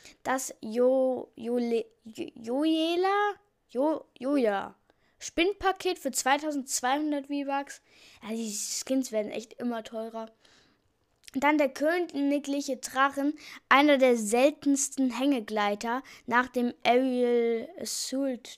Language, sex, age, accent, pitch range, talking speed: German, female, 10-29, German, 230-285 Hz, 105 wpm